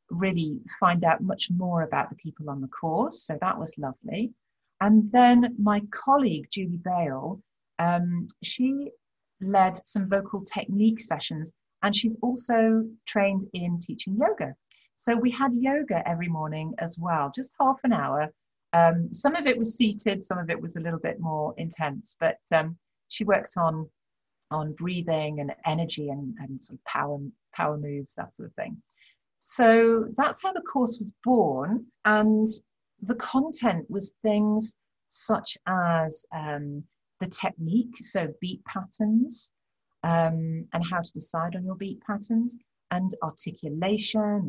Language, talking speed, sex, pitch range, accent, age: English, 150 wpm, female, 165-220 Hz, British, 40-59